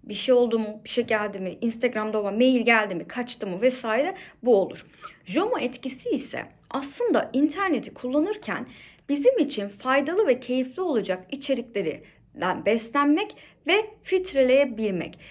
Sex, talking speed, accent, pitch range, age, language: female, 135 wpm, native, 225-300 Hz, 30-49, Turkish